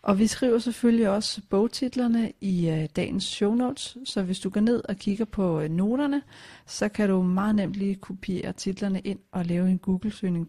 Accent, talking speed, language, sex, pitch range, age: native, 190 wpm, Danish, female, 180-215 Hz, 40-59